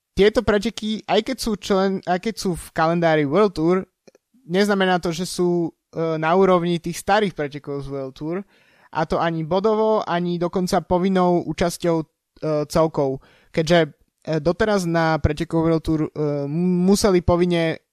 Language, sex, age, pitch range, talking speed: Slovak, male, 20-39, 155-185 Hz, 130 wpm